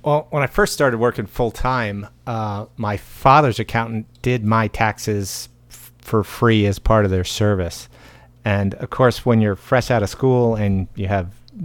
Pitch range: 100-120 Hz